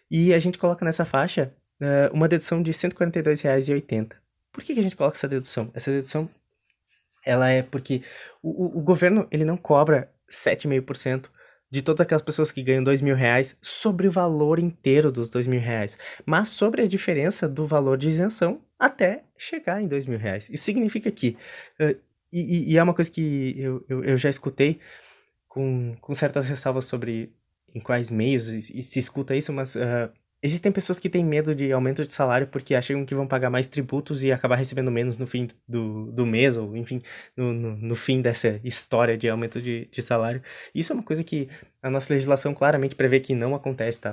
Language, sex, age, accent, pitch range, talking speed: Portuguese, male, 20-39, Brazilian, 125-155 Hz, 185 wpm